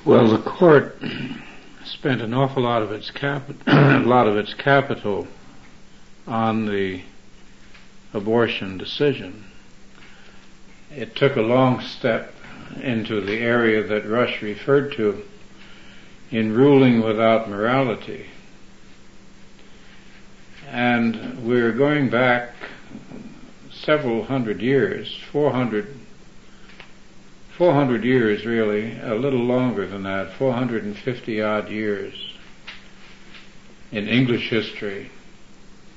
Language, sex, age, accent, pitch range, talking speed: English, male, 60-79, American, 105-130 Hz, 95 wpm